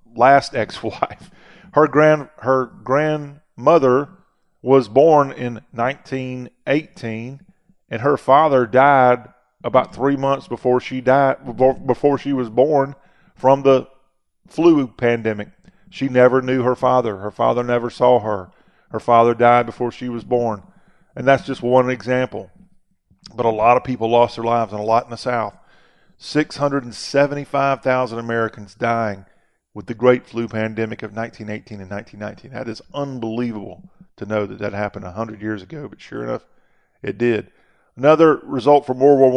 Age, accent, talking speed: 40-59, American, 155 wpm